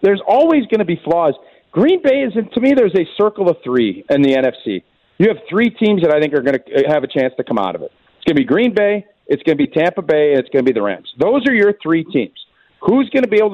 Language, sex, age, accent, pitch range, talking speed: English, male, 40-59, American, 175-240 Hz, 295 wpm